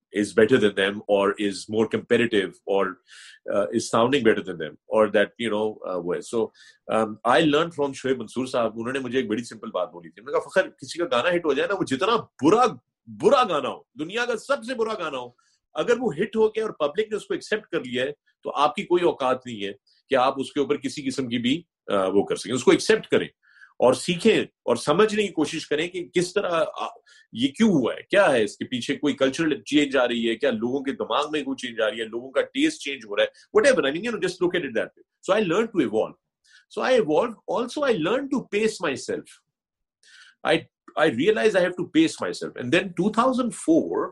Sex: male